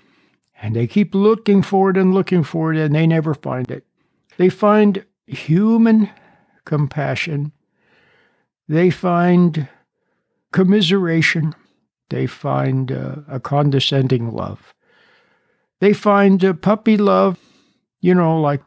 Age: 60-79